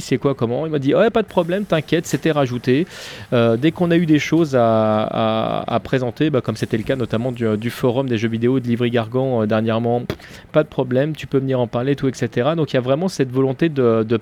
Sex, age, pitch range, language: male, 30-49, 115-140 Hz, French